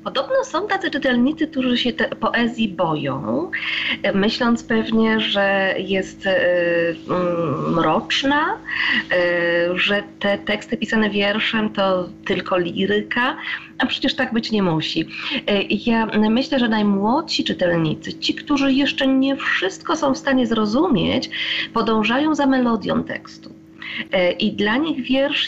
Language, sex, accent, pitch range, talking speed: Polish, female, native, 190-260 Hz, 125 wpm